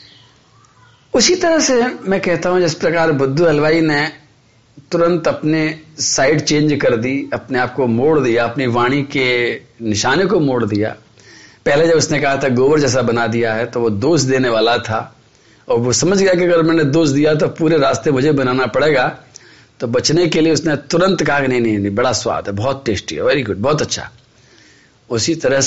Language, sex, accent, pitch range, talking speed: Hindi, male, native, 115-150 Hz, 190 wpm